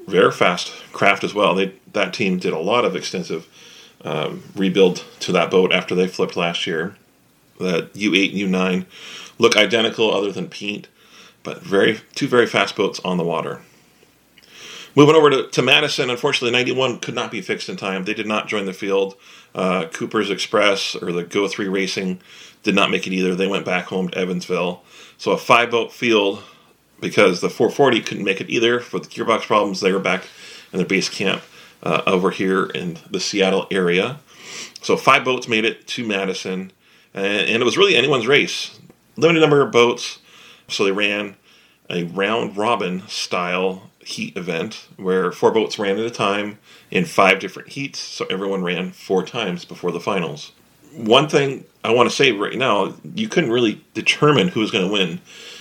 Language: English